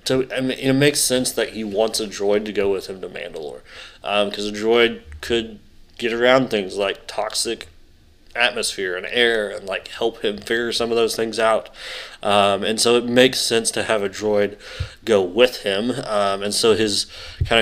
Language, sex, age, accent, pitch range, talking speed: English, male, 20-39, American, 100-115 Hz, 200 wpm